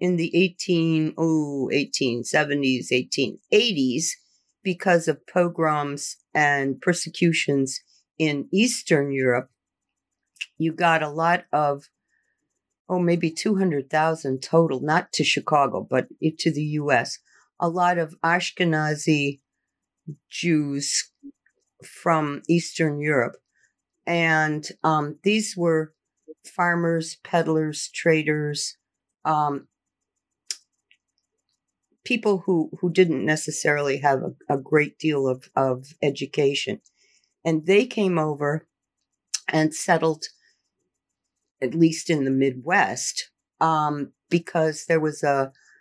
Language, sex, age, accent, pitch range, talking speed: English, female, 50-69, American, 145-170 Hz, 100 wpm